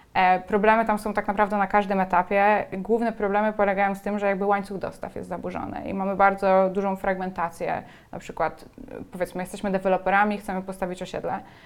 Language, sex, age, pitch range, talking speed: Polish, female, 20-39, 185-215 Hz, 165 wpm